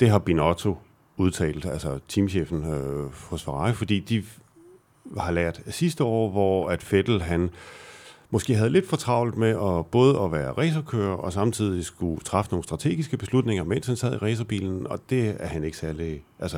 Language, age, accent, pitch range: Danish, 40-59, native, 85-115 Hz